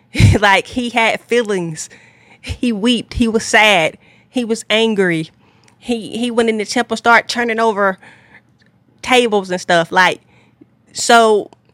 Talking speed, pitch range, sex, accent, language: 135 wpm, 180-230 Hz, female, American, English